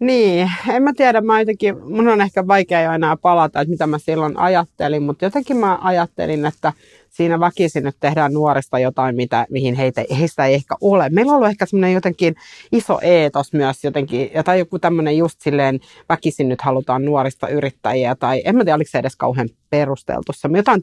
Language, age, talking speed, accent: Finnish, 30-49, 195 wpm, native